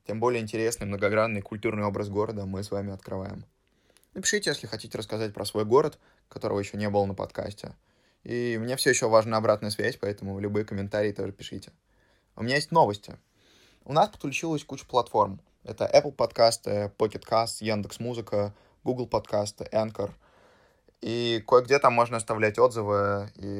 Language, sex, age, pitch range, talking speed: Russian, male, 20-39, 100-115 Hz, 155 wpm